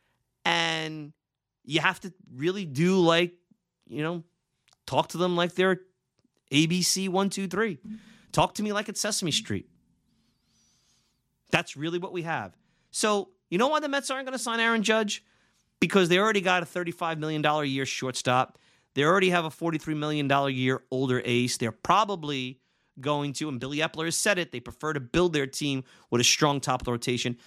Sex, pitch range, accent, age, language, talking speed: male, 130-180 Hz, American, 30-49, English, 175 wpm